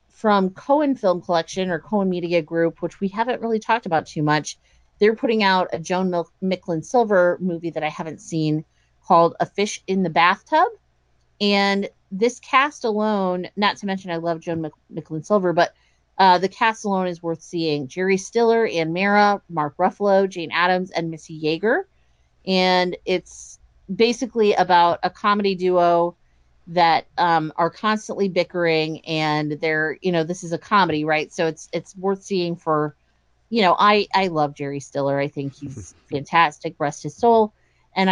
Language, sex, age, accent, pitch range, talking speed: English, female, 30-49, American, 165-210 Hz, 170 wpm